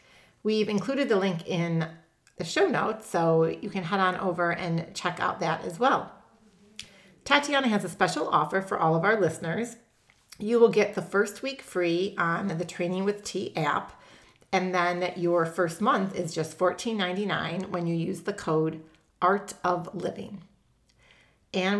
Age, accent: 40-59, American